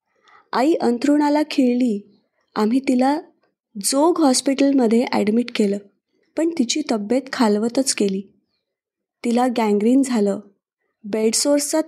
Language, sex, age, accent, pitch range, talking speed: Marathi, female, 20-39, native, 225-290 Hz, 90 wpm